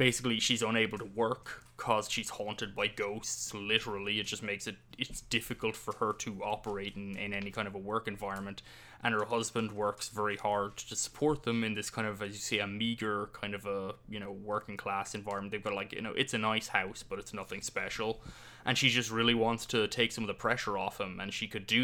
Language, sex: English, male